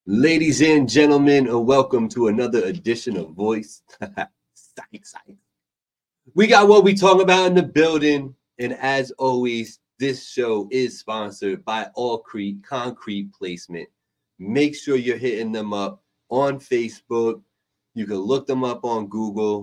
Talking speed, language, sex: 140 wpm, English, male